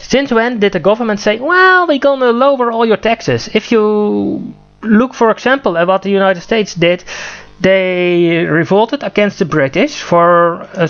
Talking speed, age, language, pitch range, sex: 170 wpm, 30-49, English, 160-220 Hz, male